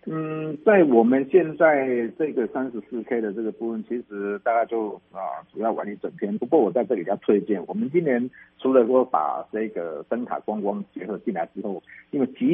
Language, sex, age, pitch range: Chinese, male, 50-69, 115-165 Hz